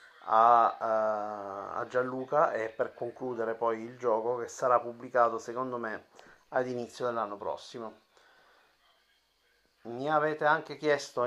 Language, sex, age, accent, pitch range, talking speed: Italian, male, 30-49, native, 115-135 Hz, 115 wpm